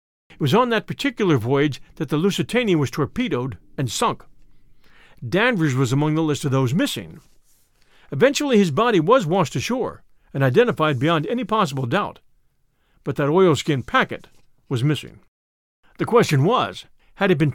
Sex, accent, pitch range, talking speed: male, American, 140-210 Hz, 155 wpm